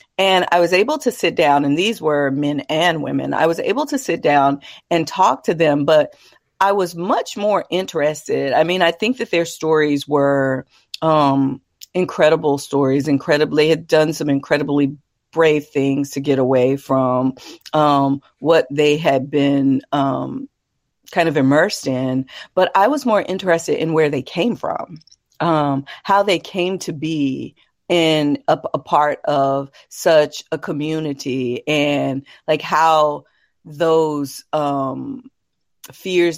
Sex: female